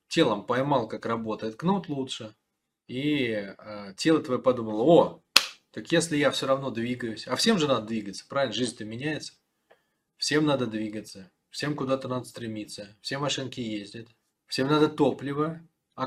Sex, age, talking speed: male, 20-39, 145 wpm